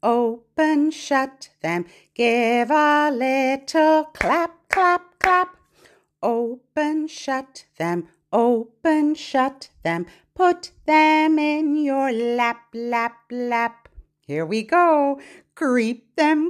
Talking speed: 100 wpm